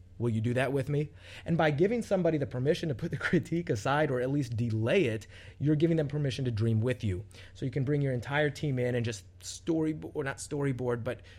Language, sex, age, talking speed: English, male, 30-49, 230 wpm